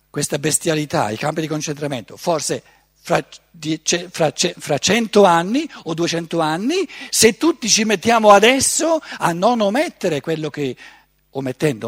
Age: 50-69